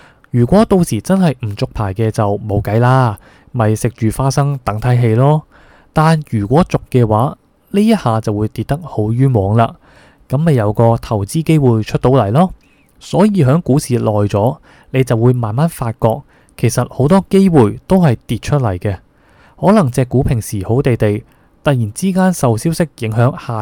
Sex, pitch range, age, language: male, 110-150 Hz, 20-39, Chinese